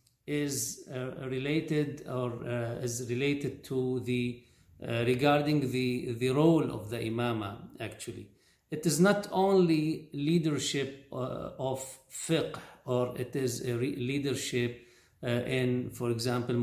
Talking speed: 130 wpm